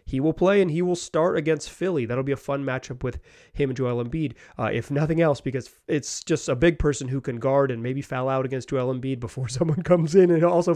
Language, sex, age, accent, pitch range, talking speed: English, male, 30-49, American, 120-150 Hz, 250 wpm